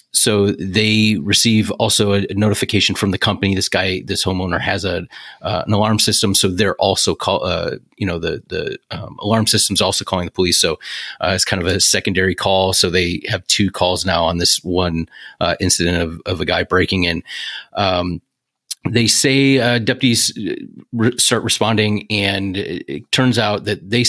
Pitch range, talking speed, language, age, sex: 95-115 Hz, 190 wpm, English, 30-49, male